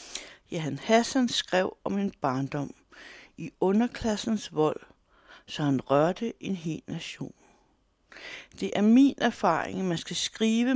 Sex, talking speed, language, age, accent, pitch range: female, 135 wpm, Danish, 60-79, native, 155-225 Hz